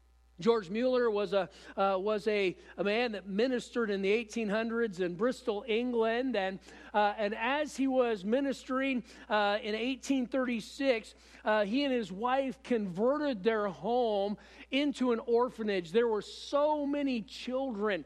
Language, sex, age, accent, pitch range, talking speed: English, male, 50-69, American, 195-255 Hz, 145 wpm